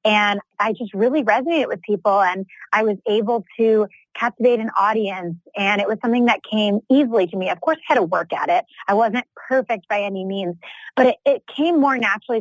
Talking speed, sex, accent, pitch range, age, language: 215 wpm, female, American, 195-240 Hz, 20-39, English